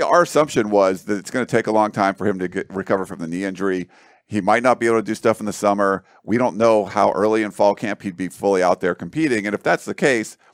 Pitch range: 105-130 Hz